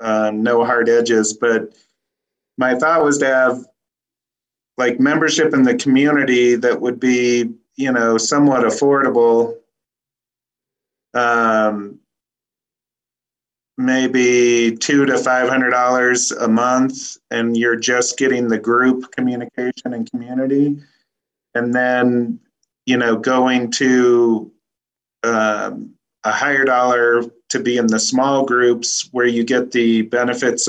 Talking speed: 115 wpm